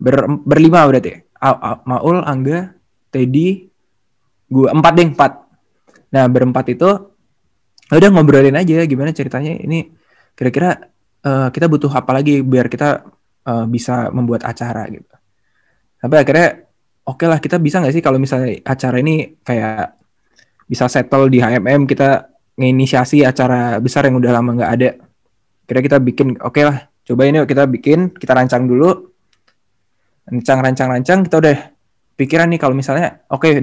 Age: 20-39